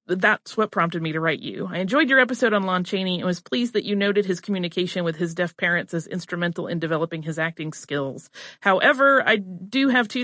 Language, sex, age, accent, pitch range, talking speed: English, female, 30-49, American, 165-210 Hz, 225 wpm